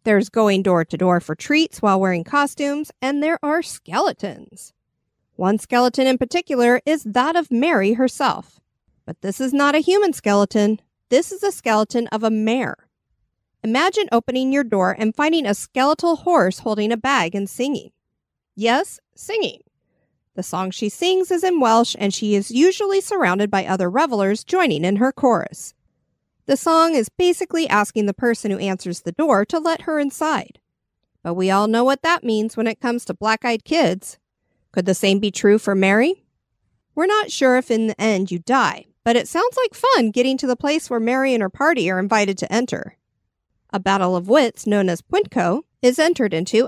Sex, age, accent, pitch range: female, 40-59, American, 200-305 Hz